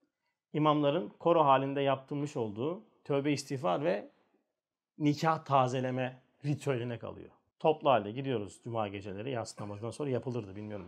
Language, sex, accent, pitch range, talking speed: Turkish, male, native, 125-170 Hz, 115 wpm